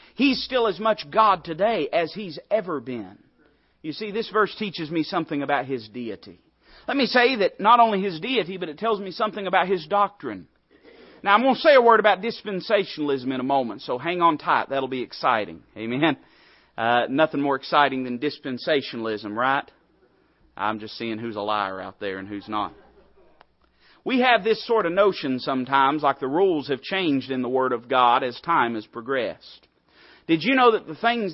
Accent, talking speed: American, 195 wpm